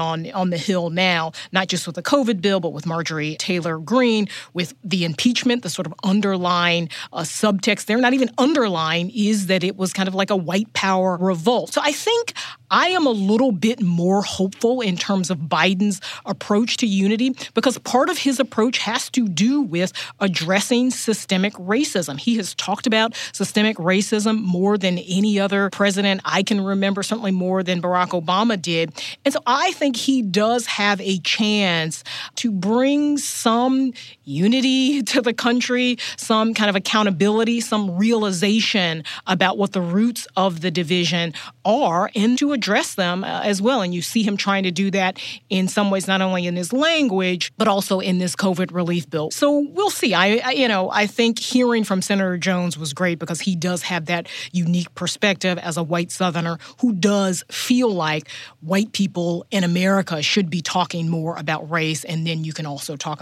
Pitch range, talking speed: 175-220 Hz, 185 wpm